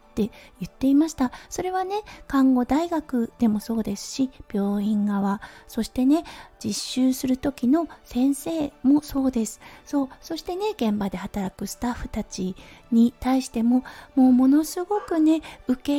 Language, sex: Japanese, female